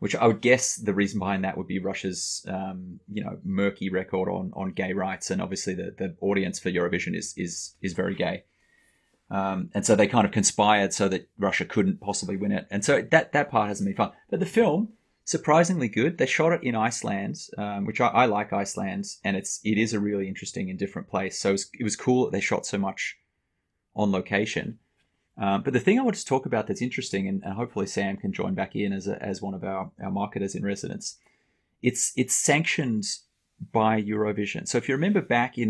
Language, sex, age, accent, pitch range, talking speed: English, male, 30-49, Australian, 95-125 Hz, 225 wpm